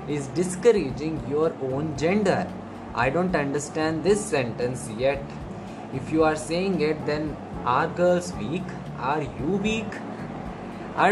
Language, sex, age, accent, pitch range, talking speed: English, male, 20-39, Indian, 145-185 Hz, 130 wpm